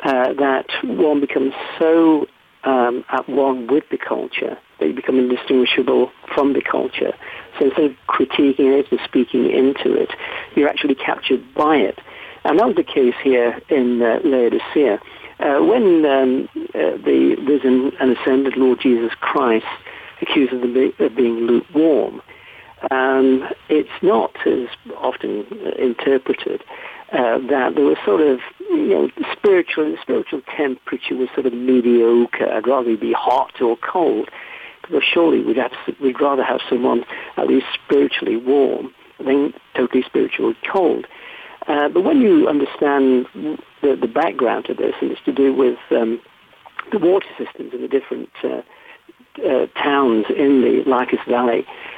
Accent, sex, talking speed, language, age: British, male, 150 wpm, English, 60-79